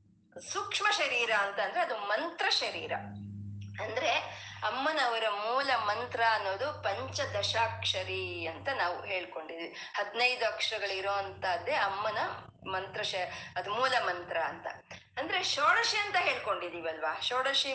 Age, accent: 20-39, native